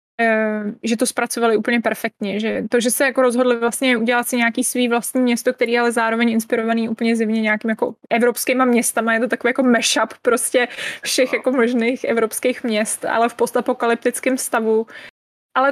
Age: 20-39